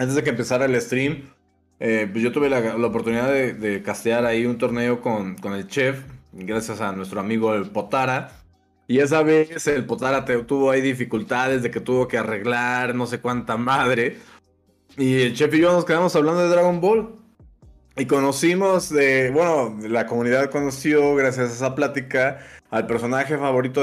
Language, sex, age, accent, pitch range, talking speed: Spanish, male, 20-39, Mexican, 110-135 Hz, 180 wpm